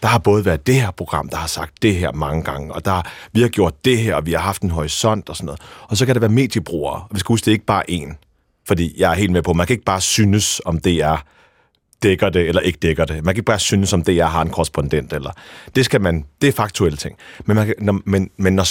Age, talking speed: 30-49, 285 wpm